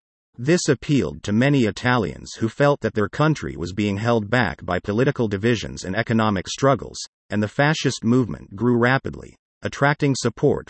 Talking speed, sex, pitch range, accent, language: 155 wpm, male, 95-130 Hz, American, English